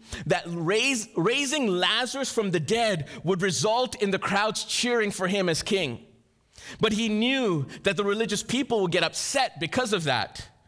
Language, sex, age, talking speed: English, male, 30-49, 170 wpm